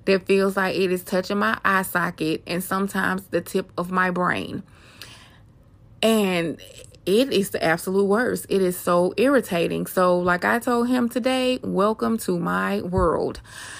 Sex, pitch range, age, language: female, 170-200 Hz, 20-39, English